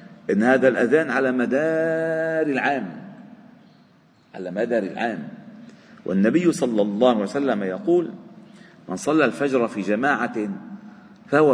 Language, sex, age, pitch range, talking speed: Arabic, male, 50-69, 120-205 Hz, 110 wpm